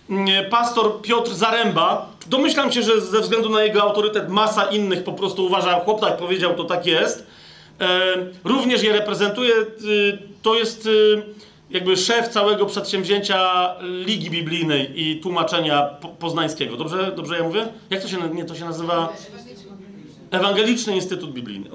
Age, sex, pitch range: 40-59, male, 185-230 Hz